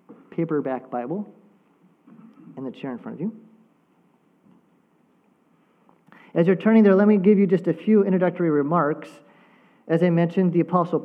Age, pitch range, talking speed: 40-59, 160-220 Hz, 145 wpm